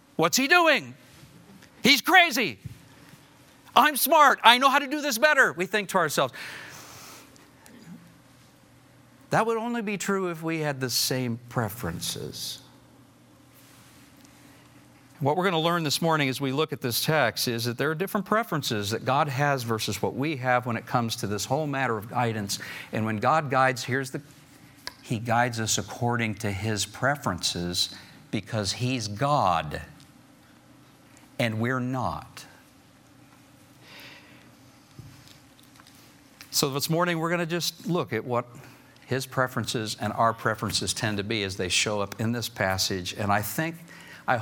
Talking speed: 150 wpm